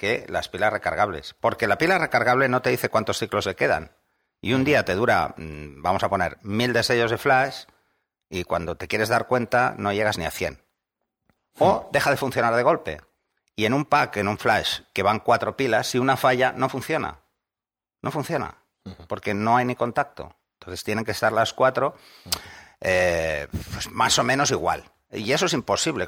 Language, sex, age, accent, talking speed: Spanish, male, 60-79, Spanish, 190 wpm